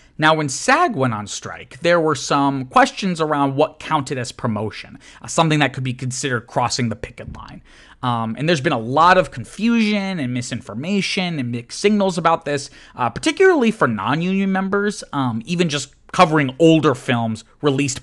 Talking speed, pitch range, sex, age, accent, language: 175 wpm, 125-185 Hz, male, 30-49, American, English